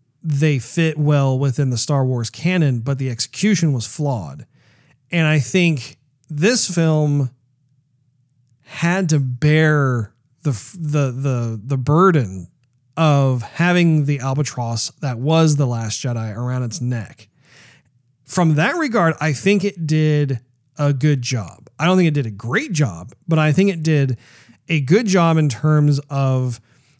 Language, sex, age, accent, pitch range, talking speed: English, male, 40-59, American, 125-155 Hz, 150 wpm